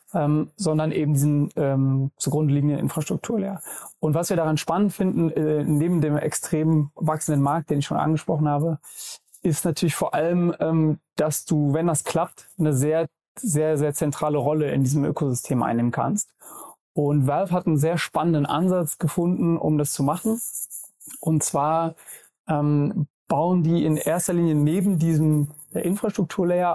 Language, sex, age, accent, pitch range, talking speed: German, male, 30-49, German, 145-170 Hz, 155 wpm